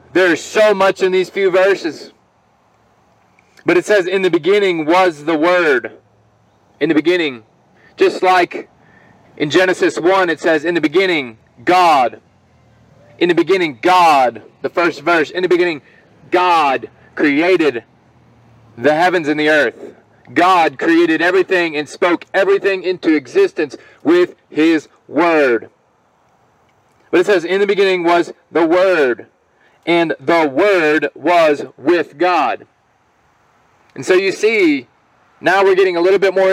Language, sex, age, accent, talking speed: English, male, 30-49, American, 140 wpm